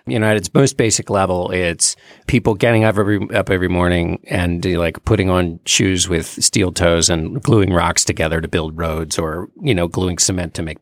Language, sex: English, male